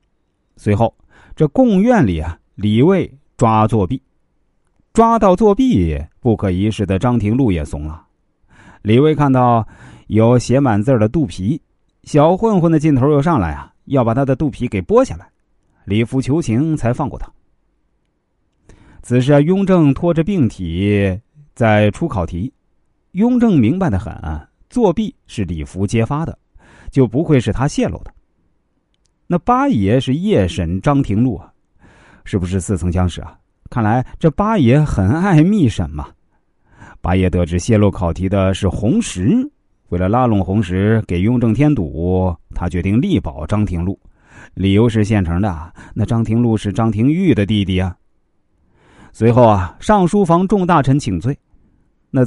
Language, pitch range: Chinese, 95-145 Hz